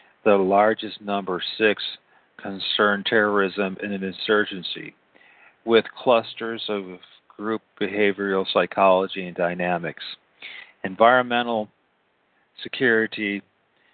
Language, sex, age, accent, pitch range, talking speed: English, male, 40-59, American, 100-115 Hz, 80 wpm